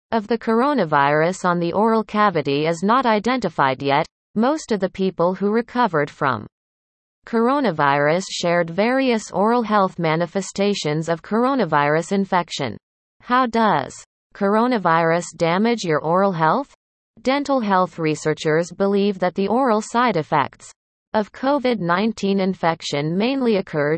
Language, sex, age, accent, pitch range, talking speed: English, female, 30-49, American, 165-230 Hz, 120 wpm